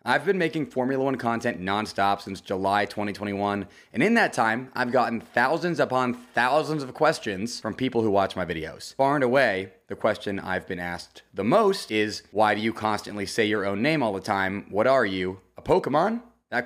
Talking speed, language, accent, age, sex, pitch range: 200 wpm, English, American, 30-49, male, 100-125 Hz